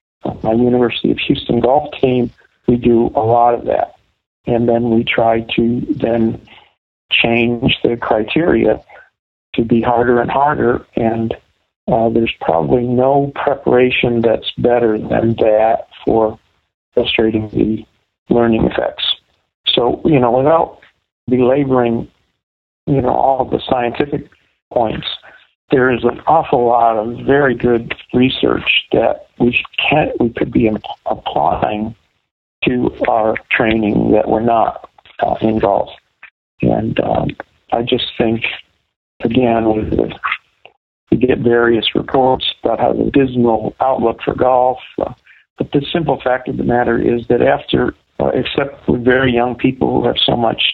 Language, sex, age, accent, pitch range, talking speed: English, male, 50-69, American, 115-125 Hz, 140 wpm